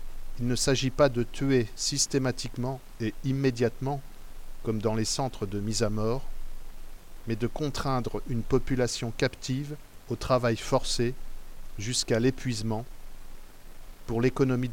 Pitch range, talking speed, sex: 110-130 Hz, 120 wpm, male